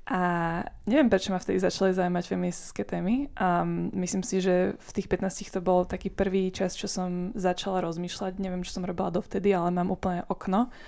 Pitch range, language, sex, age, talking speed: 180-200 Hz, Slovak, female, 20-39, 190 wpm